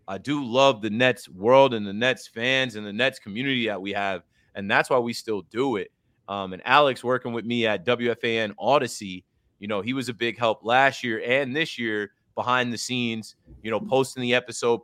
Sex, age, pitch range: male, 30-49, 110-140 Hz